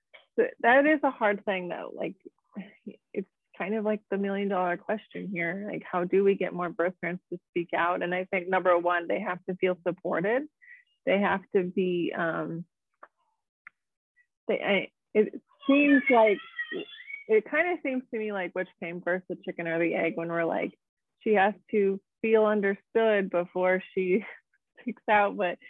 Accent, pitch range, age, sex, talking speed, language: American, 180-215 Hz, 30-49, female, 175 wpm, English